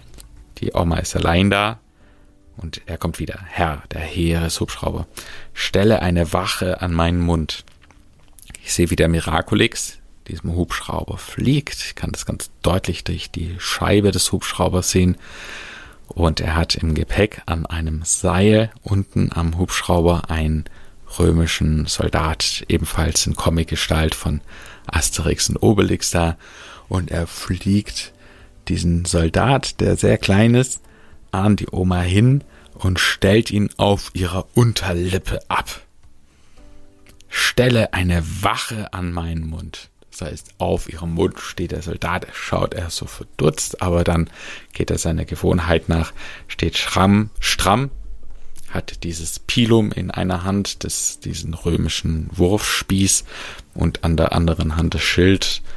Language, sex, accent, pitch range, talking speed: German, male, German, 80-100 Hz, 130 wpm